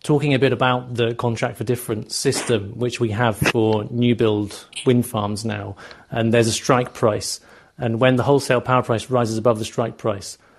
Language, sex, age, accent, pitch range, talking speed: English, male, 40-59, British, 110-130 Hz, 195 wpm